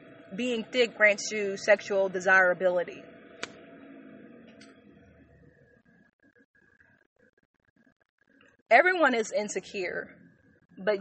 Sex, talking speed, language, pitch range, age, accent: female, 55 wpm, English, 180-215 Hz, 30-49, American